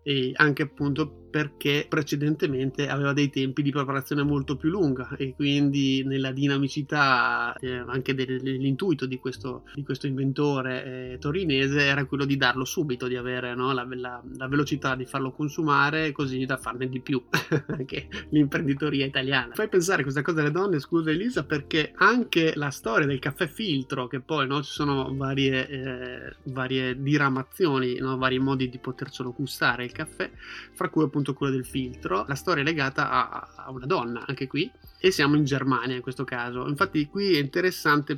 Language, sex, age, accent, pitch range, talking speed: Italian, male, 30-49, native, 130-145 Hz, 160 wpm